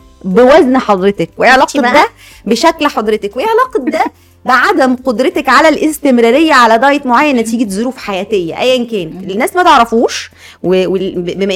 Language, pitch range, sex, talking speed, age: Arabic, 210-290 Hz, female, 125 wpm, 20-39